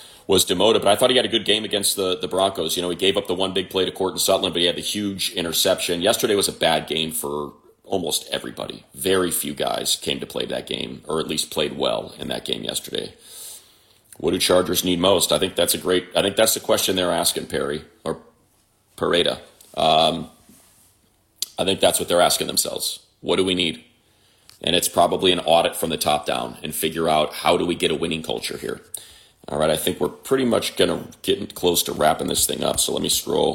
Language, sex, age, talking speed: English, male, 30-49, 230 wpm